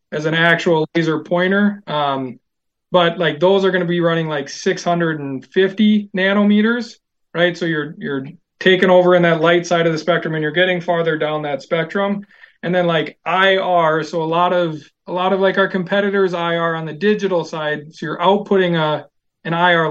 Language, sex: English, male